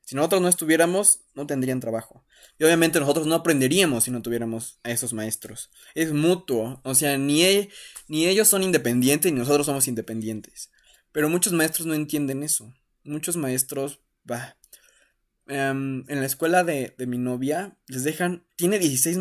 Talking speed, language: 165 wpm, Spanish